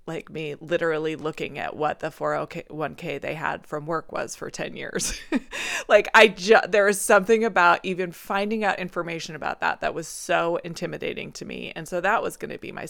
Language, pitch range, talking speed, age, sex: English, 170-225 Hz, 200 wpm, 20-39, female